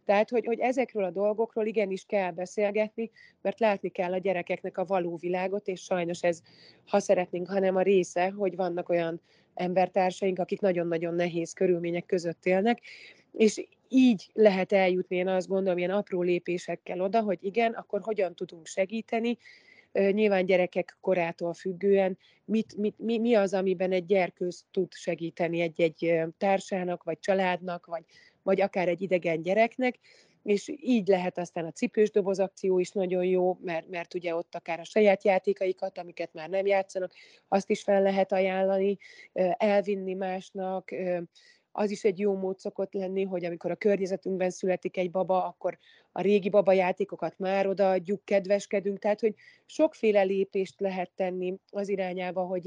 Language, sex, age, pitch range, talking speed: Hungarian, female, 30-49, 180-205 Hz, 155 wpm